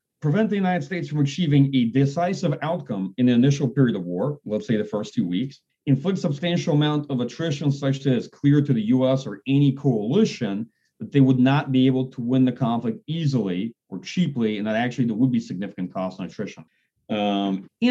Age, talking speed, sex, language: 40-59, 200 wpm, male, English